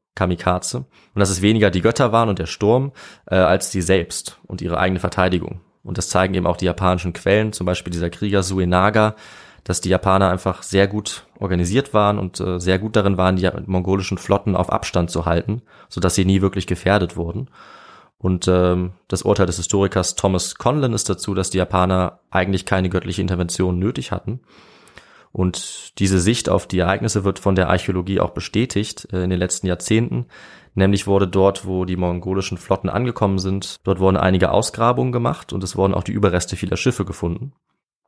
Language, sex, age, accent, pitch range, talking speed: German, male, 20-39, German, 90-105 Hz, 185 wpm